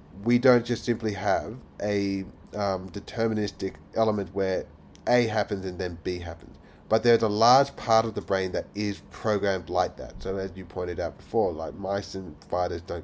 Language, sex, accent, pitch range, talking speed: English, male, Australian, 95-115 Hz, 185 wpm